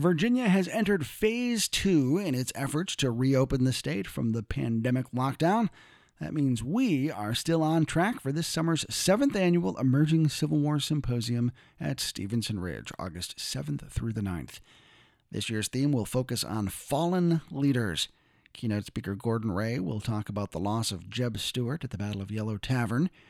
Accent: American